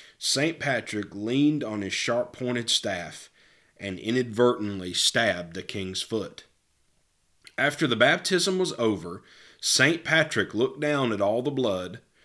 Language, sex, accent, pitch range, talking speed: English, male, American, 100-130 Hz, 125 wpm